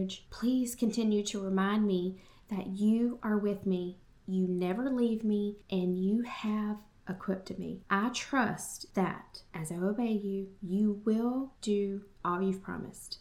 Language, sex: English, female